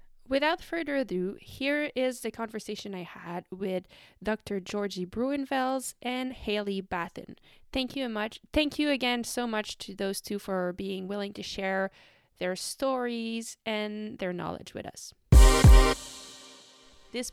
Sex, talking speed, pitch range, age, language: female, 140 wpm, 195-255 Hz, 20-39, French